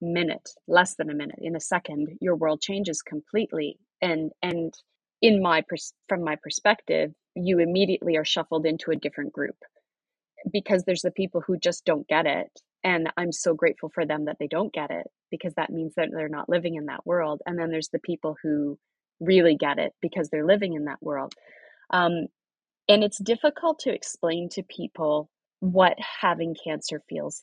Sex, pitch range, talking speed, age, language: female, 160-185 Hz, 185 wpm, 30-49, English